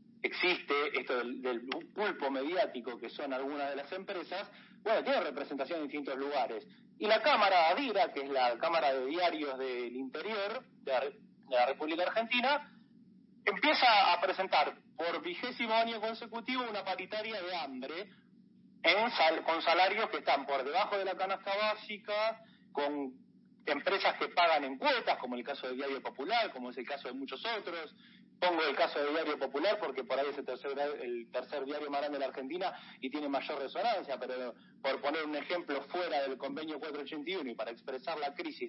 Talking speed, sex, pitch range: 175 wpm, male, 145-225 Hz